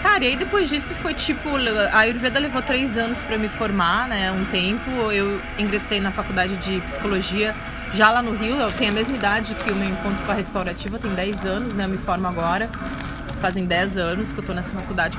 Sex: female